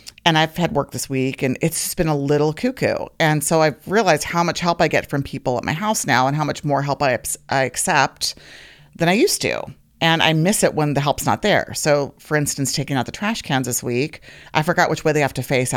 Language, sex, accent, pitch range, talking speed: English, female, American, 135-170 Hz, 255 wpm